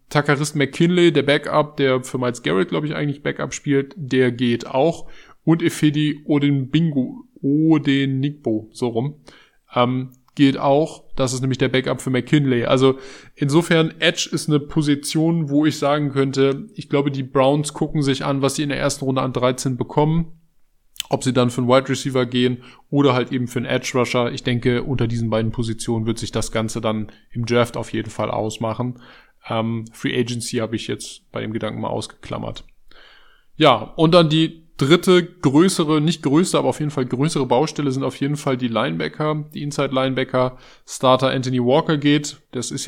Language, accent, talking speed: German, German, 185 wpm